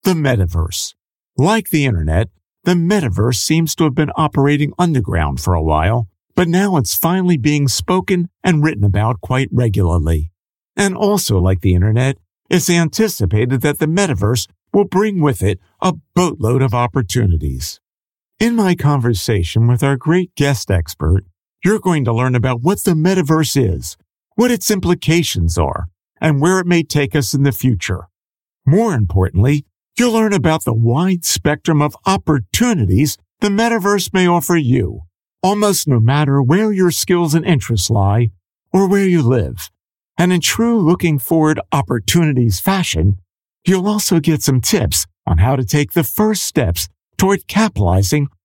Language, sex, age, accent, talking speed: English, male, 50-69, American, 155 wpm